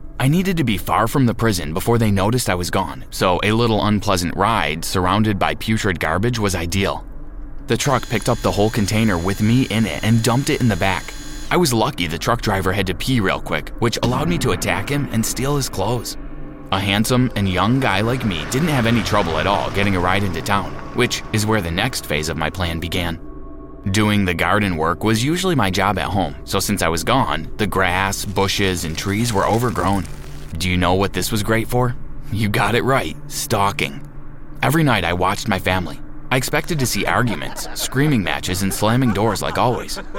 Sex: male